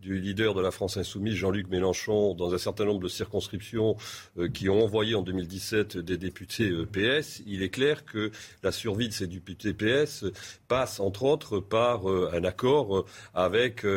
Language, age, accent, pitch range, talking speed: French, 40-59, French, 95-115 Hz, 170 wpm